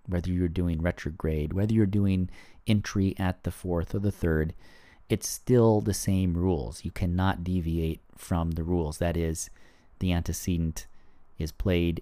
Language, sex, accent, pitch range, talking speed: English, male, American, 80-100 Hz, 155 wpm